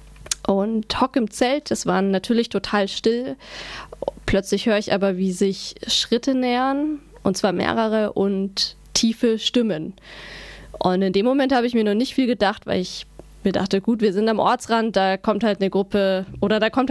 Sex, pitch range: female, 195-230 Hz